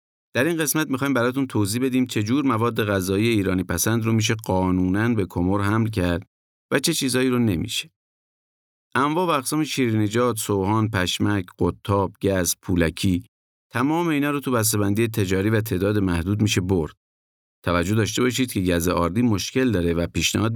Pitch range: 90-120 Hz